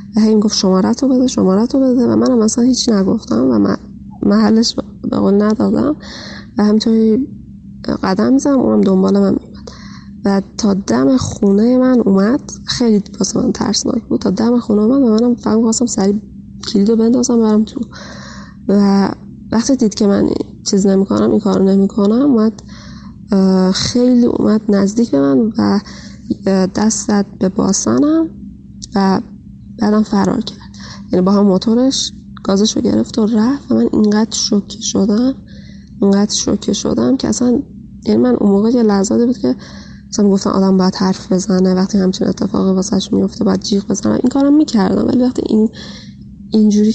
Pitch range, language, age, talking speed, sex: 195-235 Hz, Persian, 20-39, 160 wpm, female